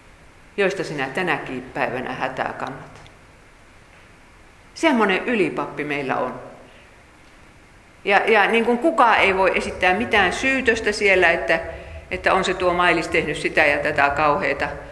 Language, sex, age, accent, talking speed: Finnish, female, 50-69, native, 130 wpm